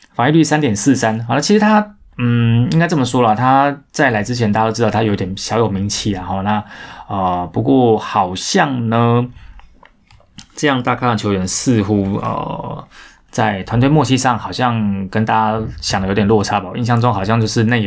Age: 20-39